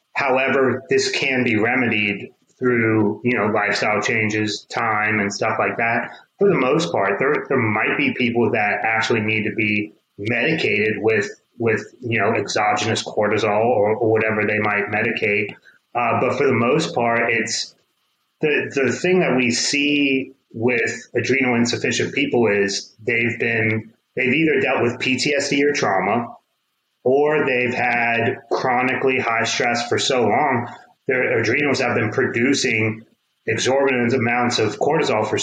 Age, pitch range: 30-49, 110-130 Hz